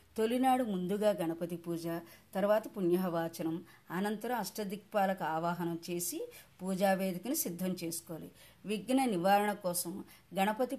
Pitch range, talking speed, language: 170-210 Hz, 95 wpm, Telugu